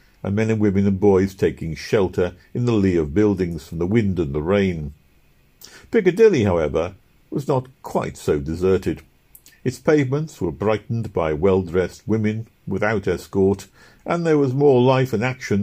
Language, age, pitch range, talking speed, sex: English, 50-69, 90-120 Hz, 160 wpm, male